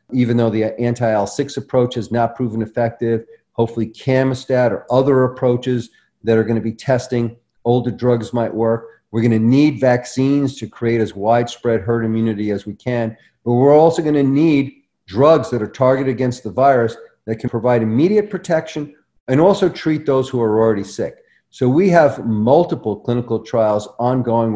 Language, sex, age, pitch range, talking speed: English, male, 40-59, 115-135 Hz, 165 wpm